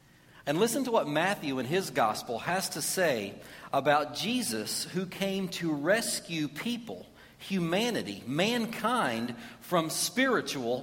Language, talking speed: English, 120 wpm